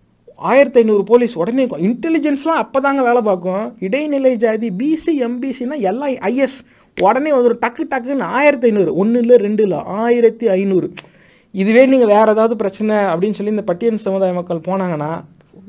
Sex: male